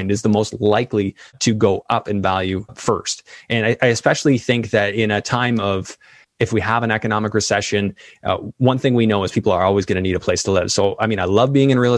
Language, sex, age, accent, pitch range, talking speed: English, male, 20-39, American, 100-115 Hz, 250 wpm